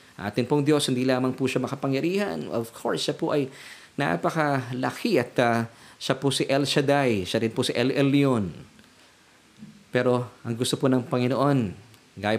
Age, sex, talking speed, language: 20-39, male, 165 wpm, Filipino